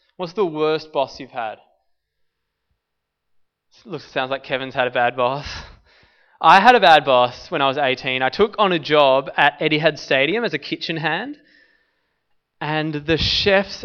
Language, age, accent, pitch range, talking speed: English, 20-39, Australian, 130-205 Hz, 175 wpm